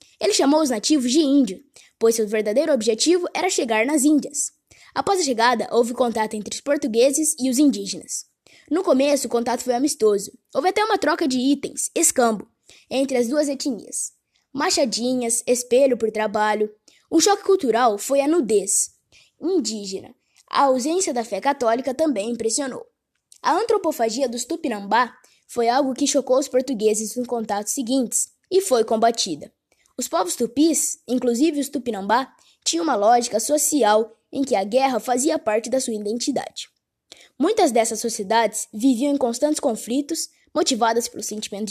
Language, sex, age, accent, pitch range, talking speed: Portuguese, female, 10-29, Brazilian, 225-295 Hz, 150 wpm